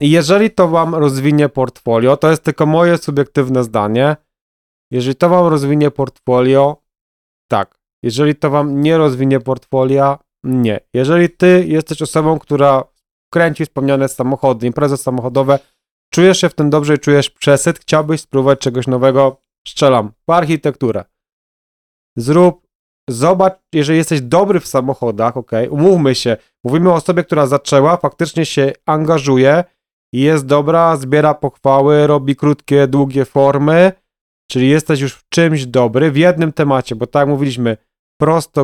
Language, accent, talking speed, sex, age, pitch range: Polish, native, 140 wpm, male, 30-49, 130-155 Hz